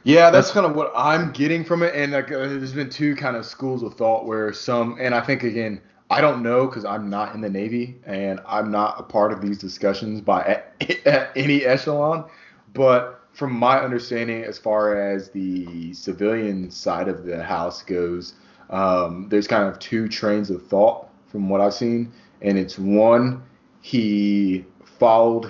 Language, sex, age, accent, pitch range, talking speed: English, male, 20-39, American, 95-120 Hz, 180 wpm